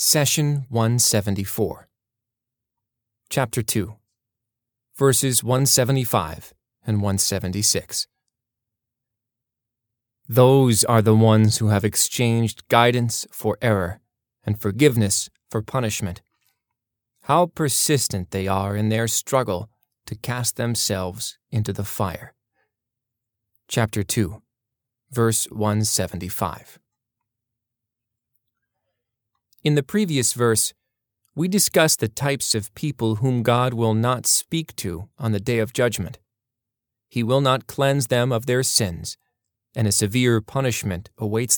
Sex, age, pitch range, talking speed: male, 20-39, 110-125 Hz, 105 wpm